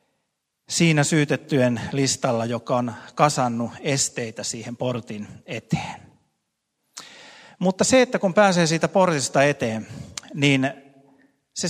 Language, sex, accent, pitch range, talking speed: Finnish, male, native, 120-155 Hz, 105 wpm